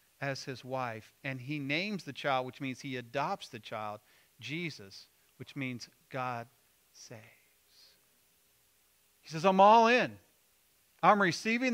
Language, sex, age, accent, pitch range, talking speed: English, male, 40-59, American, 135-190 Hz, 135 wpm